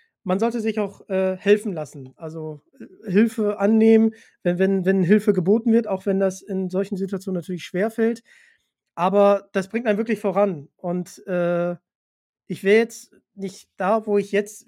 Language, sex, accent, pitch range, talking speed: German, male, German, 185-225 Hz, 165 wpm